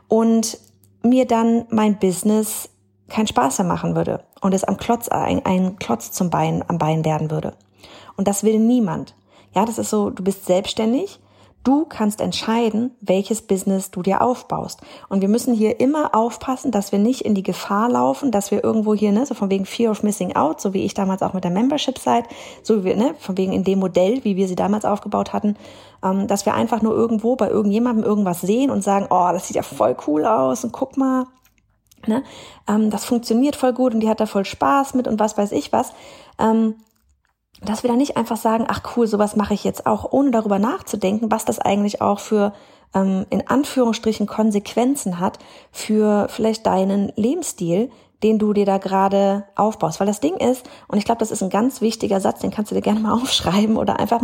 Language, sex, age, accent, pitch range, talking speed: German, female, 30-49, German, 195-235 Hz, 210 wpm